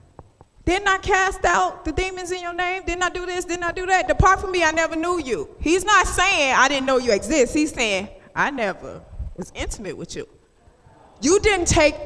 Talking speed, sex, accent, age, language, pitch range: 215 wpm, female, American, 20-39, English, 230-355 Hz